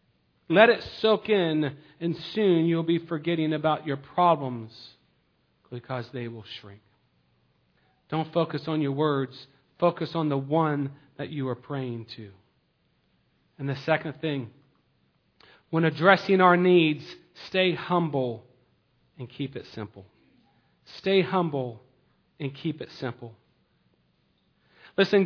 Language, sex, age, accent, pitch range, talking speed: English, male, 40-59, American, 155-205 Hz, 120 wpm